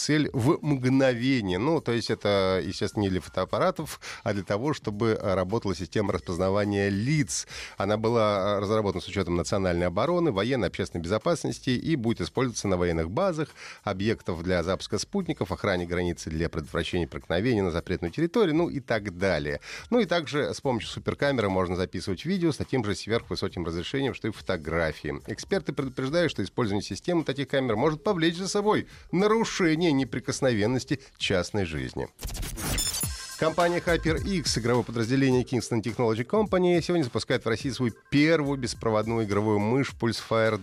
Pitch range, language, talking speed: 95-140 Hz, Russian, 150 wpm